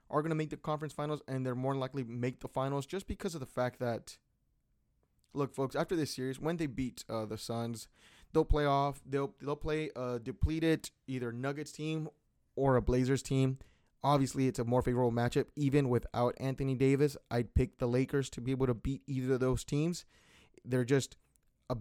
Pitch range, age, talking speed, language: 115-140 Hz, 20-39, 200 wpm, English